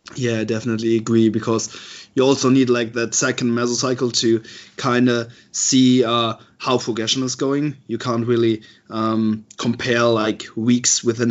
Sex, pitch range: male, 110-130 Hz